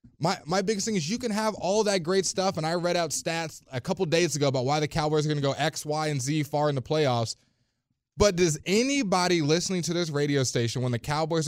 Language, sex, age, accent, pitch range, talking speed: English, male, 20-39, American, 130-170 Hz, 250 wpm